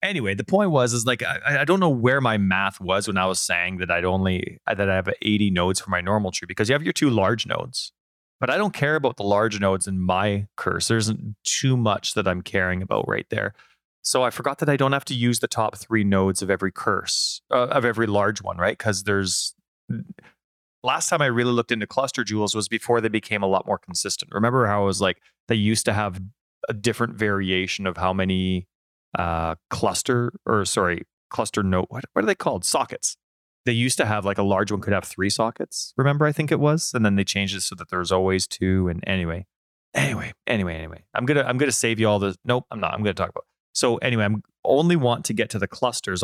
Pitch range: 95-120 Hz